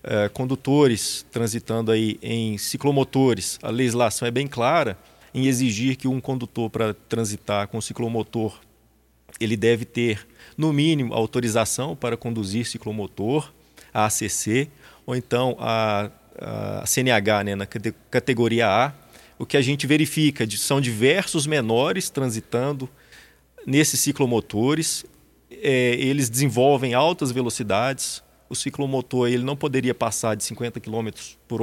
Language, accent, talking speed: Portuguese, Brazilian, 120 wpm